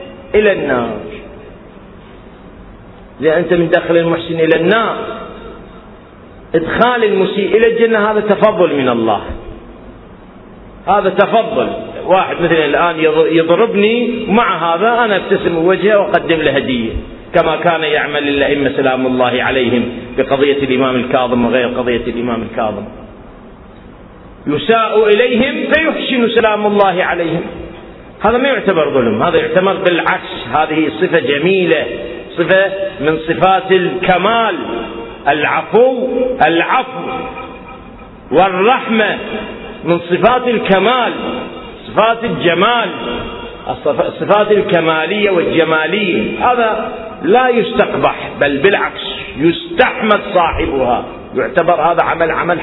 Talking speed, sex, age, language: 100 wpm, male, 40-59, Arabic